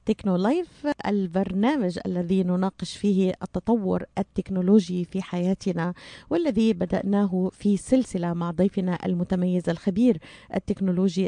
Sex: female